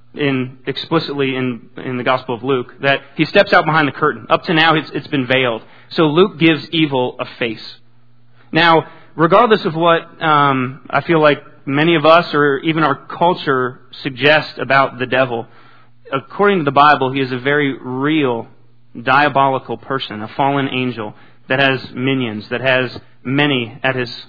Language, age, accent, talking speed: English, 30-49, American, 170 wpm